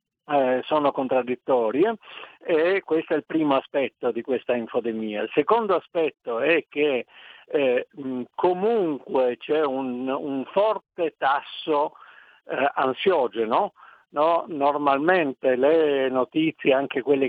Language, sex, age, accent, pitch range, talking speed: Italian, male, 50-69, native, 125-155 Hz, 110 wpm